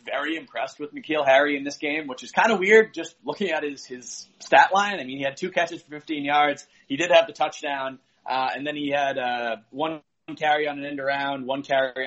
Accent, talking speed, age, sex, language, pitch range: American, 240 wpm, 30-49, male, English, 135-165 Hz